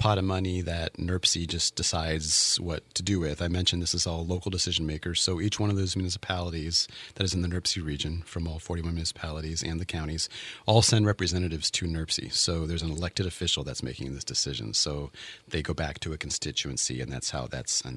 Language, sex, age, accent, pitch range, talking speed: English, male, 30-49, American, 80-95 Hz, 215 wpm